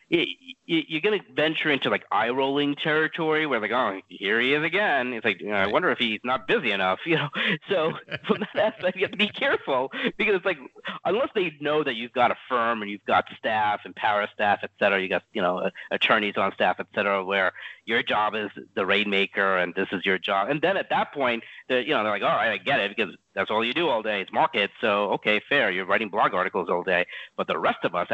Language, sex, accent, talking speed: English, male, American, 240 wpm